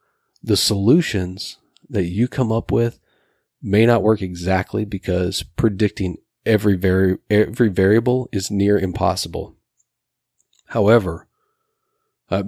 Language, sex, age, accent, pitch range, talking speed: English, male, 40-59, American, 95-115 Hz, 100 wpm